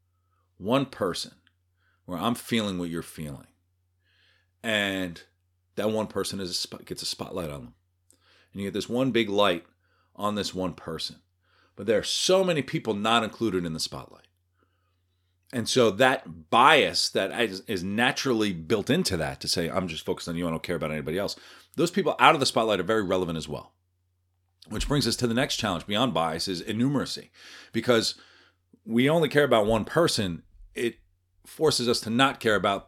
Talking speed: 185 wpm